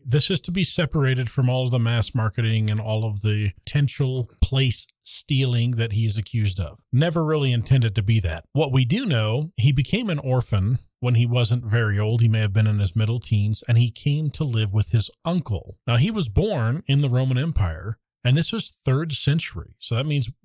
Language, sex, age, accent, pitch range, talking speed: English, male, 40-59, American, 105-140 Hz, 215 wpm